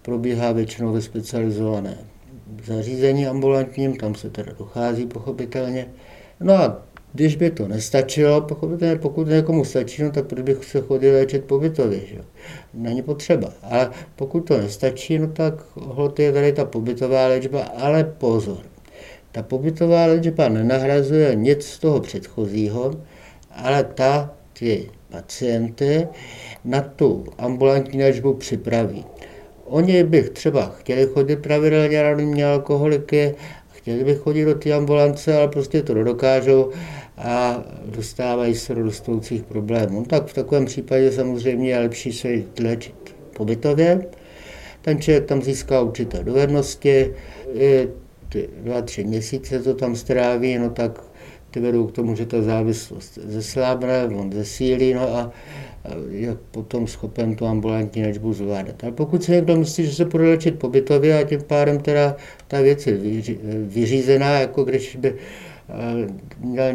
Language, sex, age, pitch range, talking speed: Czech, male, 60-79, 115-145 Hz, 140 wpm